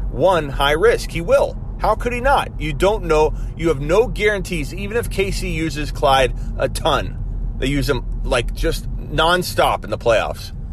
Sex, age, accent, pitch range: male, 30-49, American, 95-135 Hz